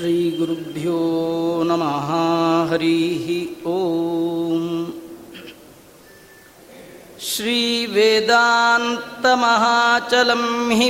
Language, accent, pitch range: Kannada, native, 230-245 Hz